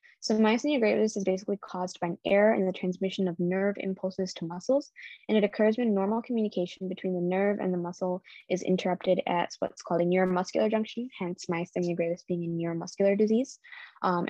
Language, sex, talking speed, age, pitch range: English, female, 190 wpm, 10-29, 180-200 Hz